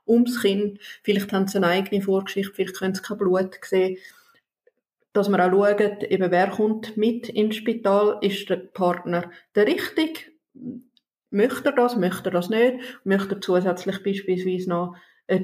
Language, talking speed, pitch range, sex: German, 165 wpm, 185-210 Hz, female